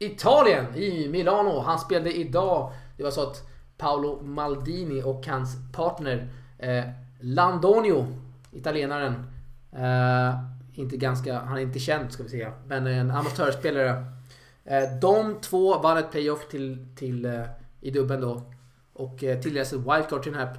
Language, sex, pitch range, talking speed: Swedish, male, 130-155 Hz, 150 wpm